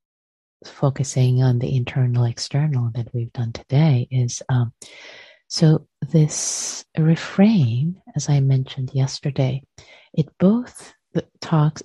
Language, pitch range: English, 130-155 Hz